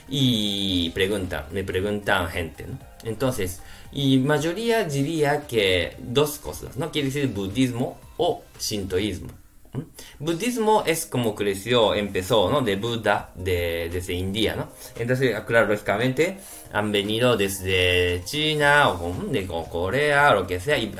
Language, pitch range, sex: Japanese, 95-145 Hz, male